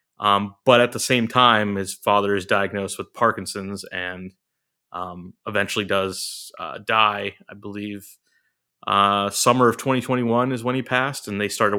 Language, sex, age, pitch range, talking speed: English, male, 20-39, 100-125 Hz, 160 wpm